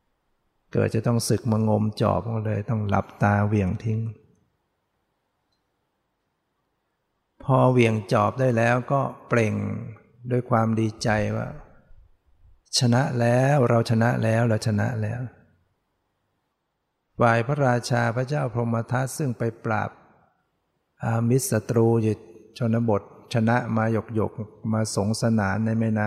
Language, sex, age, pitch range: English, male, 60-79, 105-120 Hz